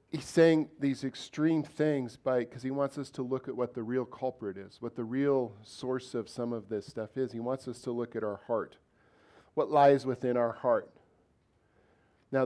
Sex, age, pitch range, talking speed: male, 40-59, 115-135 Hz, 195 wpm